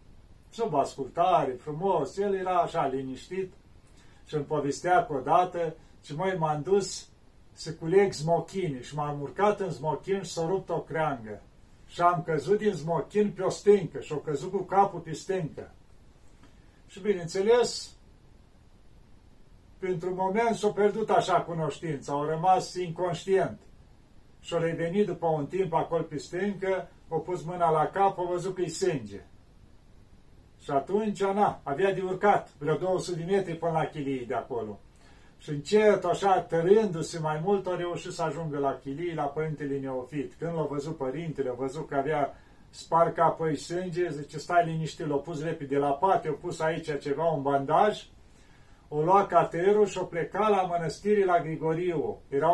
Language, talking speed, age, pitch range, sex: Romanian, 170 wpm, 50-69, 150-185 Hz, male